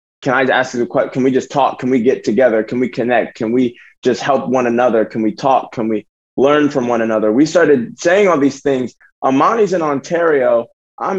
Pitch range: 105-135 Hz